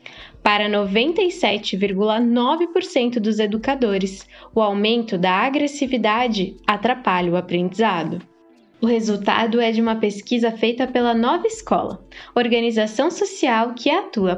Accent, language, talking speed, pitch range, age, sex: Brazilian, Portuguese, 105 wpm, 205-285 Hz, 10-29, female